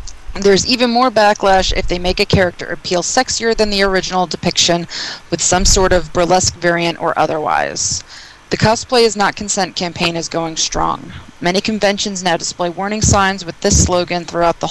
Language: English